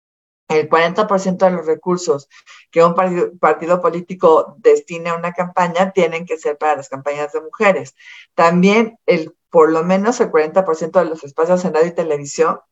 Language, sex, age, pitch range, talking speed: Spanish, female, 50-69, 160-210 Hz, 170 wpm